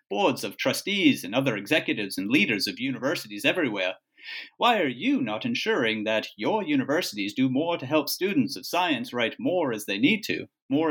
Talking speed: 180 wpm